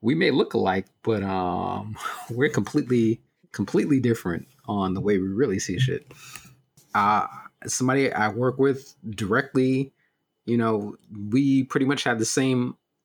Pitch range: 100-130 Hz